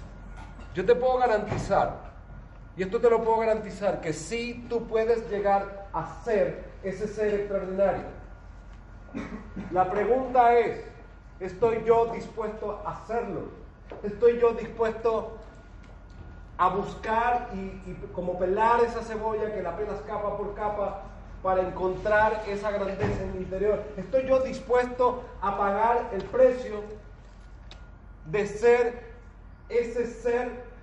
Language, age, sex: Spanish, 40-59, male